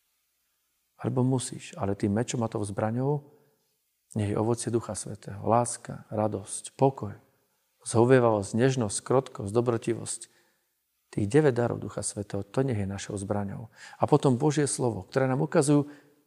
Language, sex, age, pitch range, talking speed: Slovak, male, 40-59, 105-125 Hz, 135 wpm